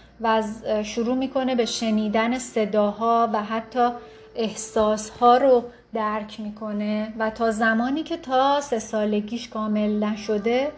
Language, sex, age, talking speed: Persian, female, 30-49, 115 wpm